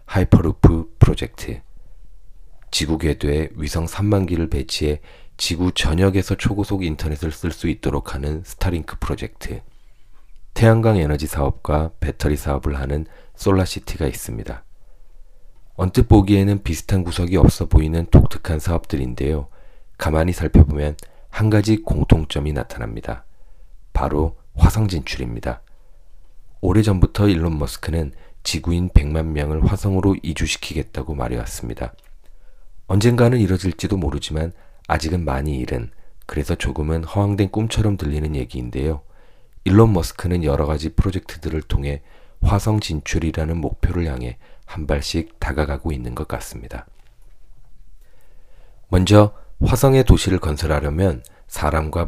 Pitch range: 75-95 Hz